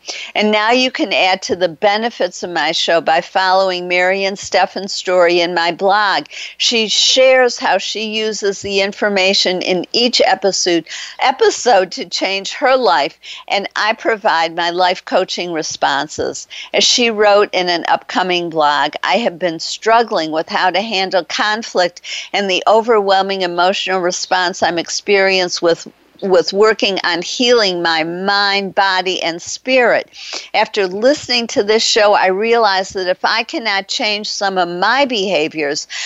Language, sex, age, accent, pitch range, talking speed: English, female, 50-69, American, 175-215 Hz, 150 wpm